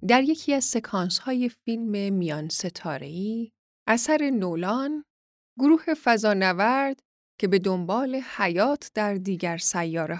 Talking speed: 120 wpm